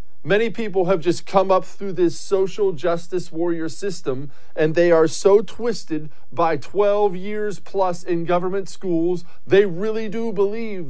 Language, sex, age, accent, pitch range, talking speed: English, male, 40-59, American, 130-195 Hz, 155 wpm